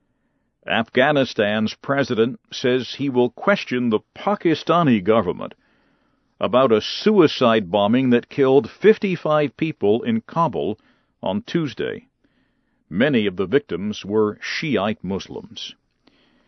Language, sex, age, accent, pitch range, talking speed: English, male, 50-69, American, 125-175 Hz, 100 wpm